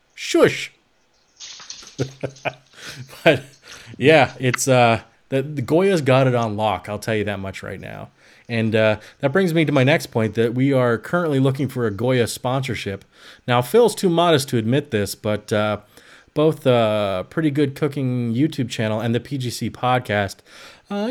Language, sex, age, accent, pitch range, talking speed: English, male, 30-49, American, 110-150 Hz, 160 wpm